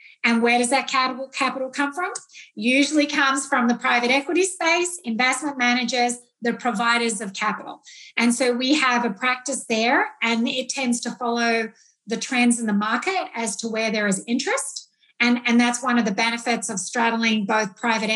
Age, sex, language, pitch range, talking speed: 30-49, female, English, 230-265 Hz, 180 wpm